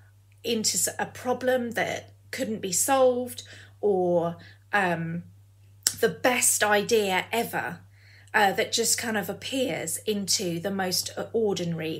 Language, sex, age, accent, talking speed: English, female, 30-49, British, 115 wpm